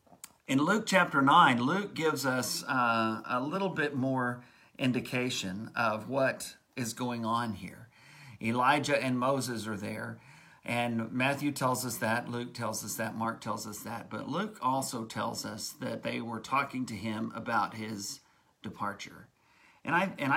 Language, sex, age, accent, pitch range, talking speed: English, male, 50-69, American, 110-135 Hz, 160 wpm